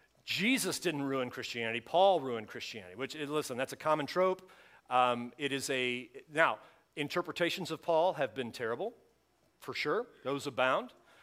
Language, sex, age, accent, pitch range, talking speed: English, male, 40-59, American, 130-165 Hz, 150 wpm